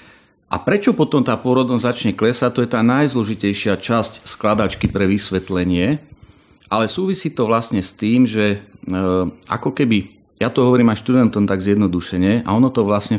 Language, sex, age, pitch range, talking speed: Slovak, male, 40-59, 100-115 Hz, 165 wpm